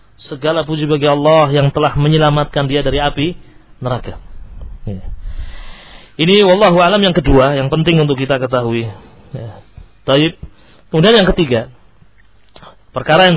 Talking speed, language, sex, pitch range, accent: 125 wpm, Indonesian, male, 105-155 Hz, native